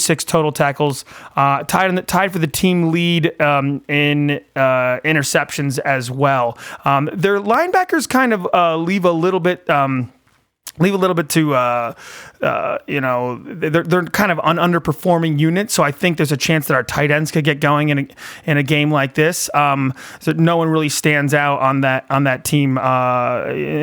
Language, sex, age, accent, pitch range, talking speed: English, male, 30-49, American, 135-165 Hz, 195 wpm